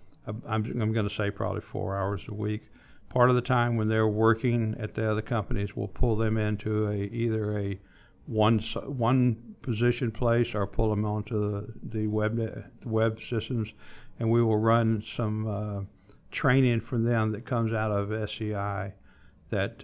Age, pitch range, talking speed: 60-79, 105-120 Hz, 170 wpm